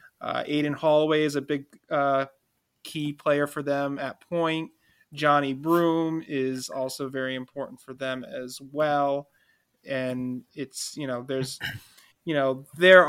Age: 20-39